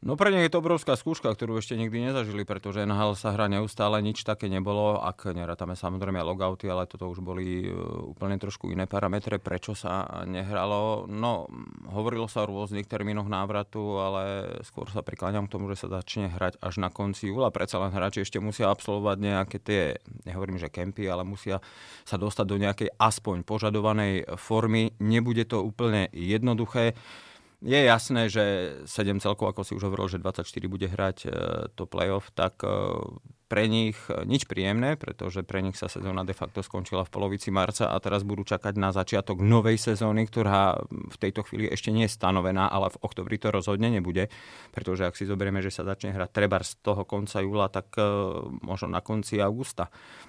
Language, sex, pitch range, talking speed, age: Slovak, male, 95-110 Hz, 180 wpm, 30-49